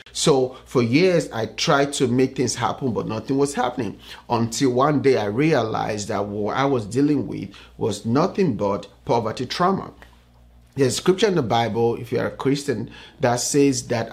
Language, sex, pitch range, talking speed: English, male, 120-150 Hz, 185 wpm